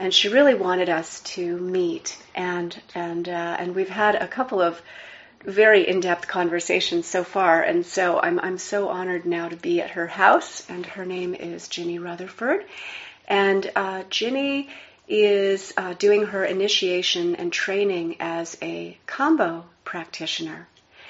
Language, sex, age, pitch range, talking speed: English, female, 40-59, 175-205 Hz, 150 wpm